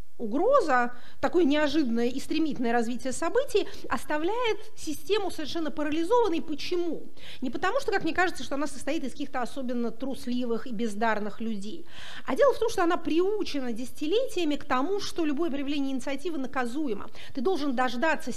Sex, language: female, Russian